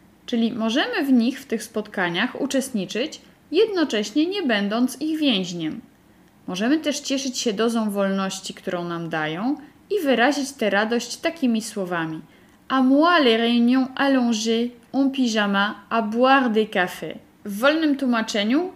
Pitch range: 220-295 Hz